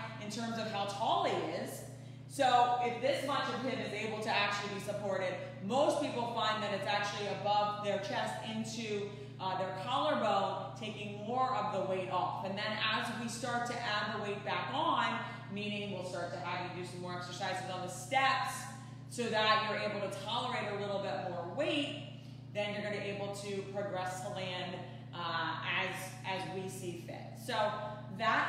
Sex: female